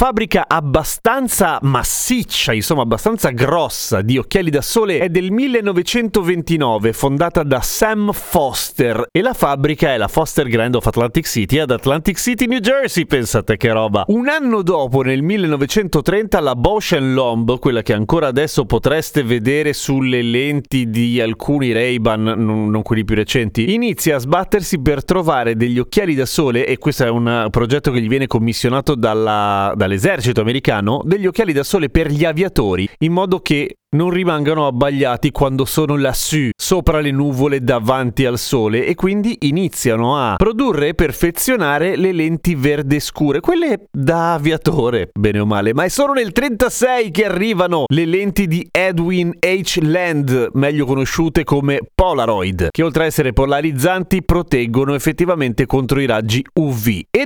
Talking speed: 155 wpm